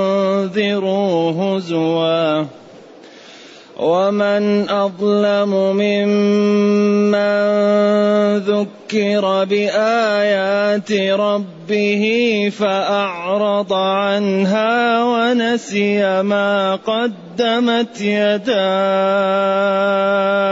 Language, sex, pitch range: Arabic, male, 195-205 Hz